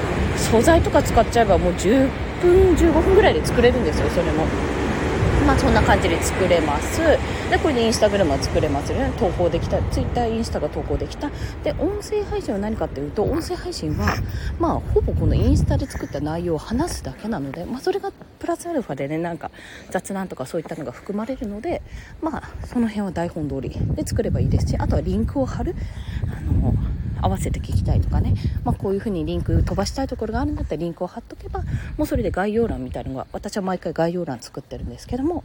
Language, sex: Japanese, female